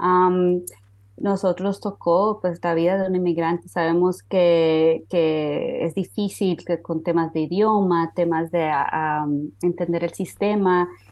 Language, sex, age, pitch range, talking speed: Spanish, female, 20-39, 165-190 Hz, 135 wpm